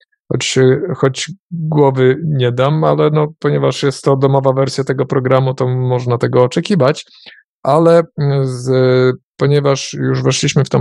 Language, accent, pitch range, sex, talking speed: Polish, native, 115-140 Hz, male, 130 wpm